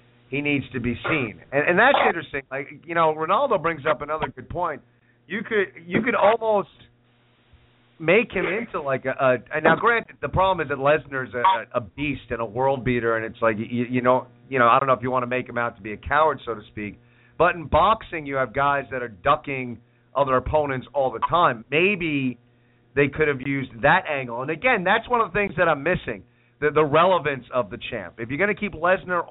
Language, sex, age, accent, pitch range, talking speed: English, male, 40-59, American, 120-165 Hz, 225 wpm